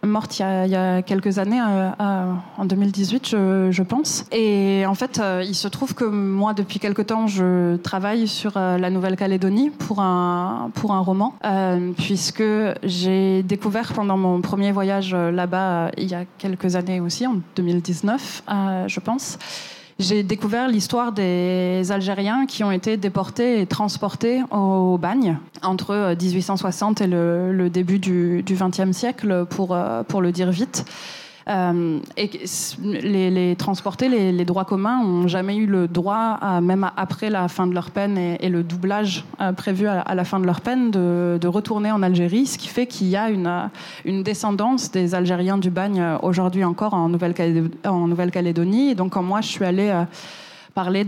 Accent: French